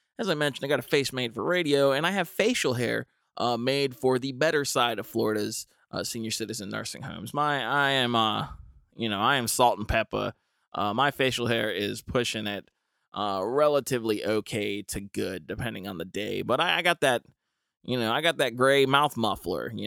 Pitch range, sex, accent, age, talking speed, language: 105-130 Hz, male, American, 20-39, 210 wpm, English